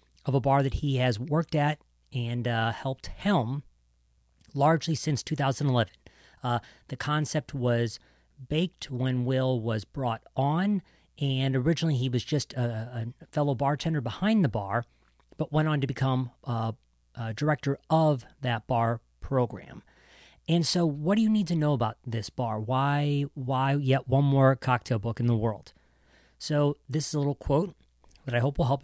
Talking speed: 165 wpm